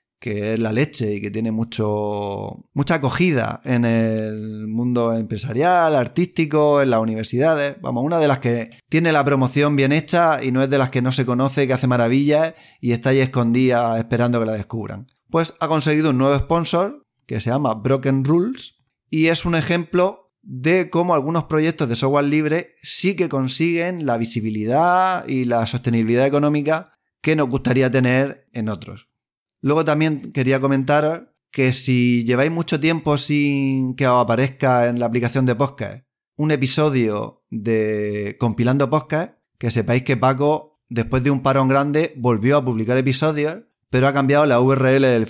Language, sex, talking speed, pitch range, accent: Spanish, male, 165 wpm, 120-150 Hz, Spanish